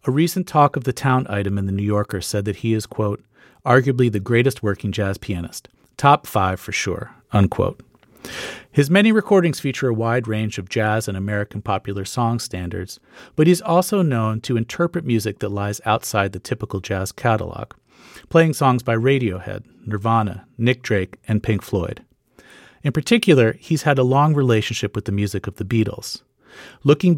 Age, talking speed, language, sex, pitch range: 40-59, 175 wpm, English, male, 100-135 Hz